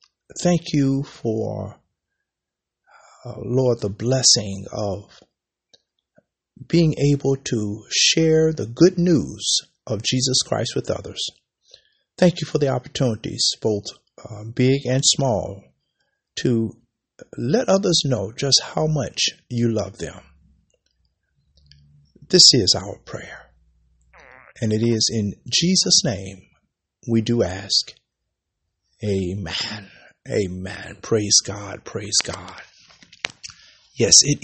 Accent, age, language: American, 50-69, English